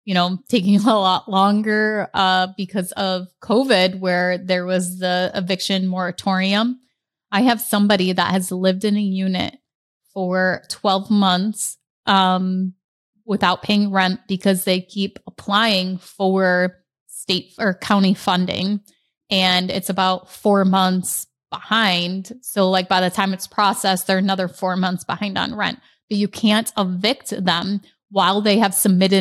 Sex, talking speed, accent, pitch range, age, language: female, 145 wpm, American, 185-210 Hz, 20-39, English